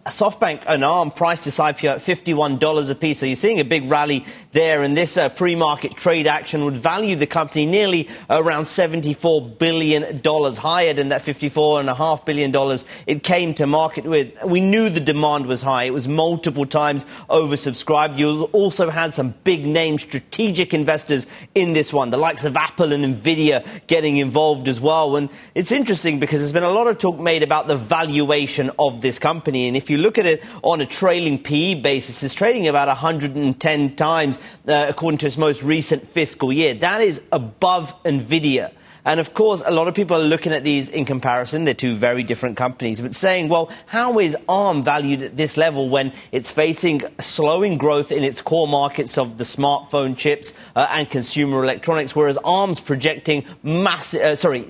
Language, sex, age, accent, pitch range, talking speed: English, male, 30-49, British, 140-165 Hz, 180 wpm